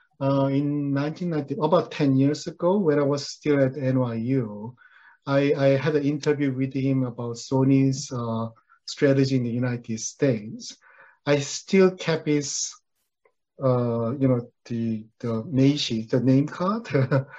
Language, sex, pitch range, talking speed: English, male, 130-165 Hz, 140 wpm